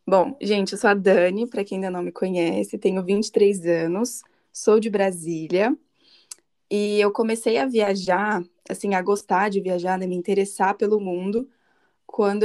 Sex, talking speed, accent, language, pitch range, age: female, 165 wpm, Brazilian, Portuguese, 180-220 Hz, 20-39